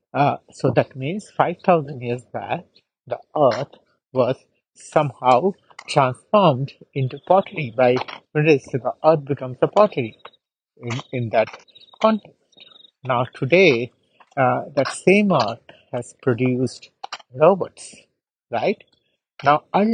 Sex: male